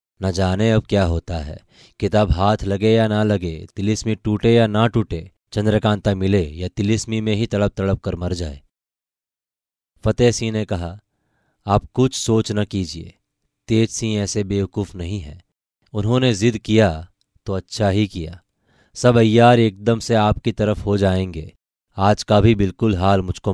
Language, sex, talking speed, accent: Hindi, male, 165 wpm, native